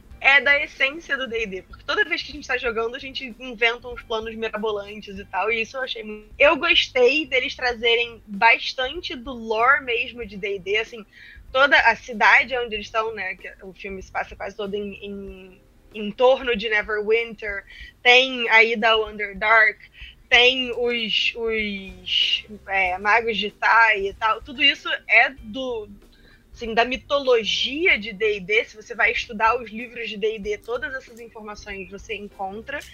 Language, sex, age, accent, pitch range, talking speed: Portuguese, female, 10-29, Brazilian, 215-260 Hz, 165 wpm